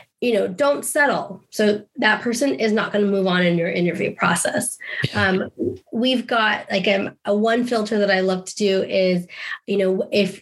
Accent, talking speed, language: American, 195 wpm, English